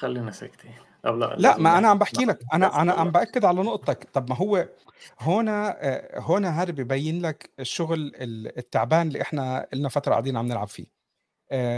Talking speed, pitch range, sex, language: 150 wpm, 135-175 Hz, male, Arabic